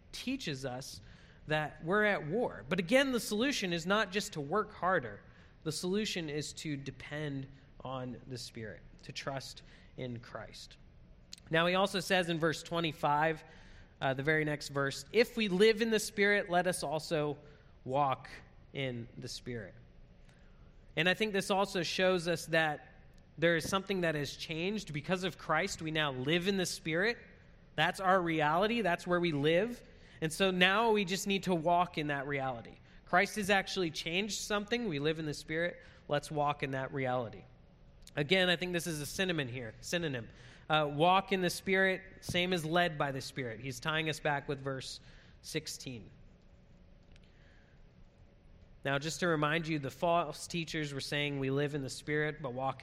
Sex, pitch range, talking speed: male, 140-185 Hz, 175 wpm